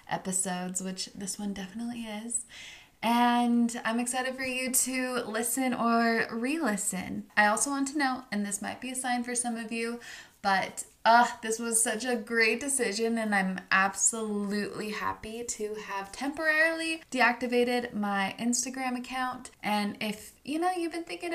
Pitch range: 205-255 Hz